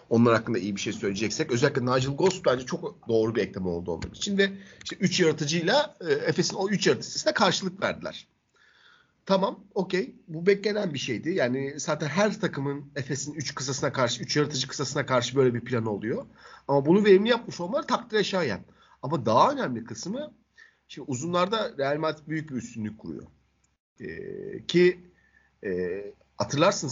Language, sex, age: Turkish, male, 50-69